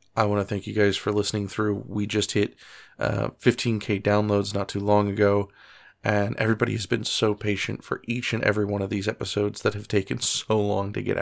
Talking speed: 215 wpm